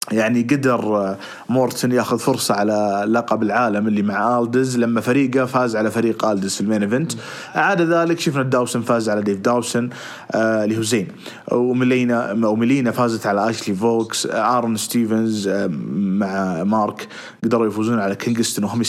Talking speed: 135 wpm